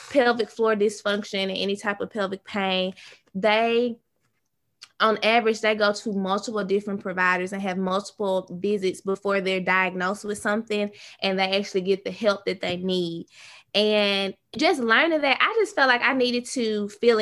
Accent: American